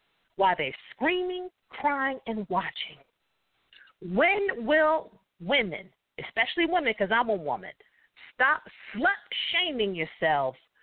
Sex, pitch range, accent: female, 170-260 Hz, American